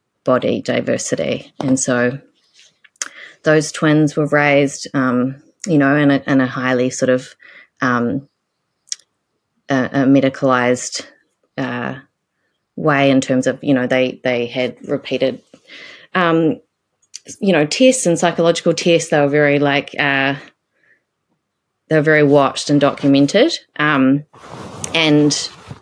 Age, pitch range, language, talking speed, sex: 30-49, 135-165 Hz, English, 115 wpm, female